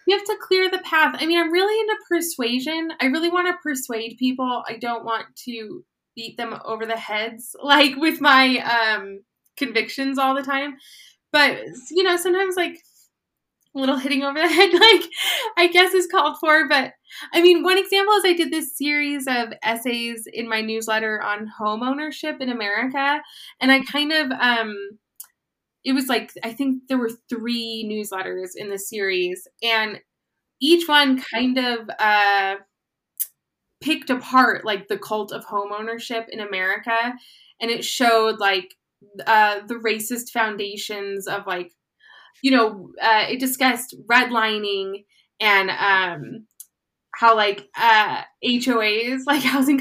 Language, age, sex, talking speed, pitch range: English, 20-39, female, 155 wpm, 215-290 Hz